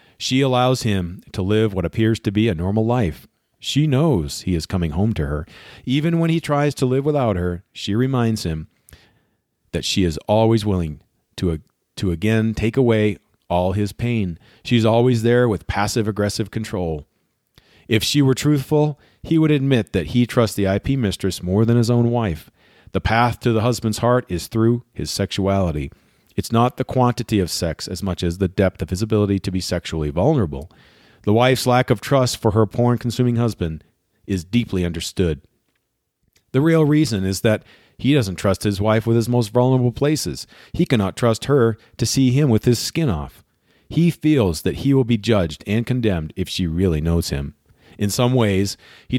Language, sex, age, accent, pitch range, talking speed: English, male, 40-59, American, 95-125 Hz, 185 wpm